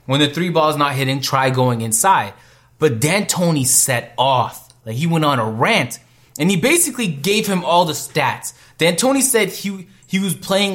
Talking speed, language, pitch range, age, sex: 190 wpm, English, 125-175 Hz, 20-39, male